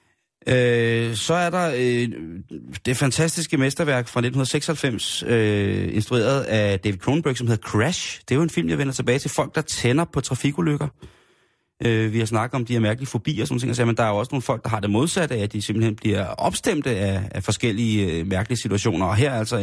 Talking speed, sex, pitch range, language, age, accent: 215 wpm, male, 110-145 Hz, Danish, 30-49, native